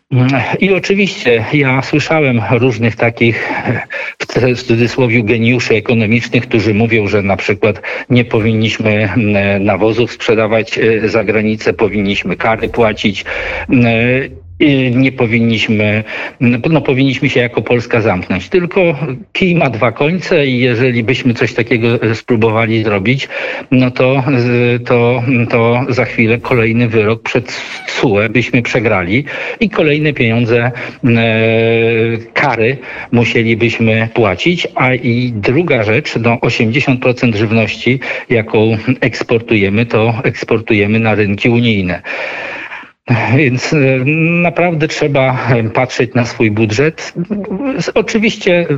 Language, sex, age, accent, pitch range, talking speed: Polish, male, 50-69, native, 115-130 Hz, 105 wpm